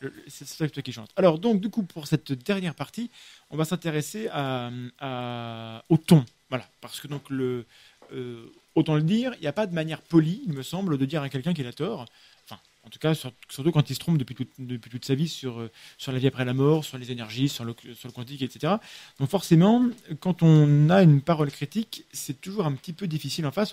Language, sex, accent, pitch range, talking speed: French, male, French, 130-165 Hz, 235 wpm